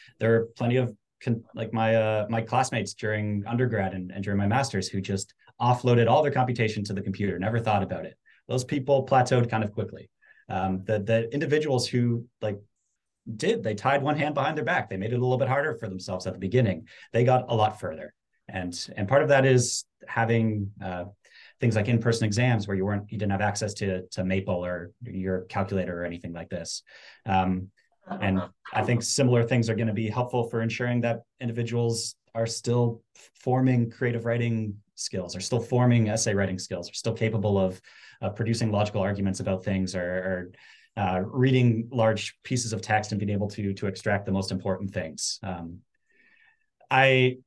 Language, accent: English, American